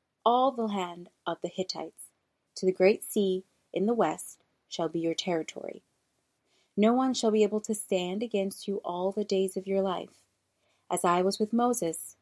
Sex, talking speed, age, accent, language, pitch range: female, 180 wpm, 30-49, American, English, 165-215 Hz